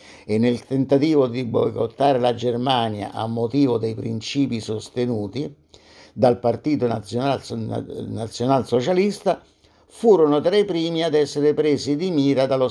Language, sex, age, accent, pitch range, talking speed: Italian, male, 60-79, native, 120-155 Hz, 120 wpm